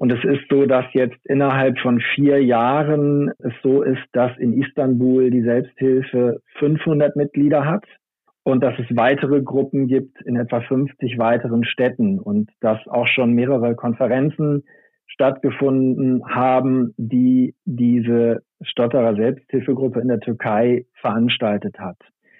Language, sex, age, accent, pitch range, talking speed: German, male, 40-59, German, 120-140 Hz, 130 wpm